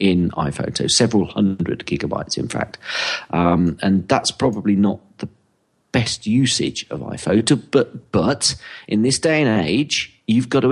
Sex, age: male, 40-59